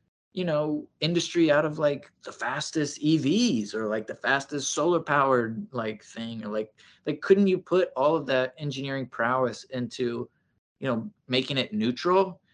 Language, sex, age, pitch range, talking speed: English, male, 20-39, 125-170 Hz, 160 wpm